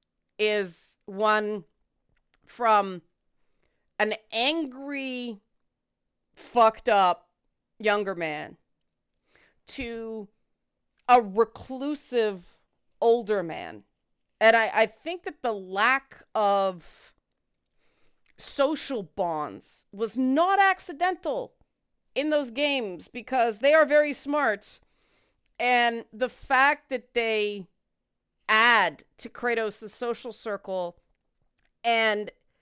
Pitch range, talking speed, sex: 195-250 Hz, 85 wpm, female